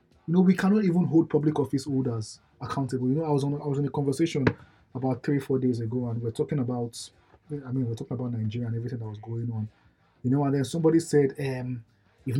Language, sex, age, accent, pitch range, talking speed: English, male, 20-39, Nigerian, 125-160 Hz, 245 wpm